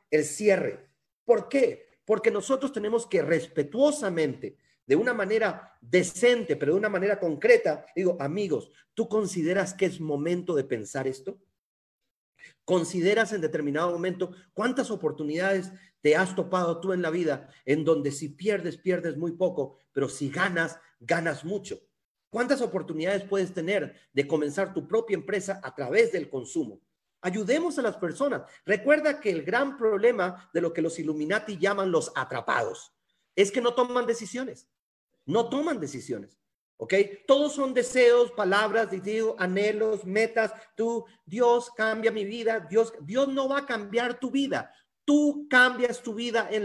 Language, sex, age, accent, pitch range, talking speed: Spanish, male, 40-59, Mexican, 175-240 Hz, 150 wpm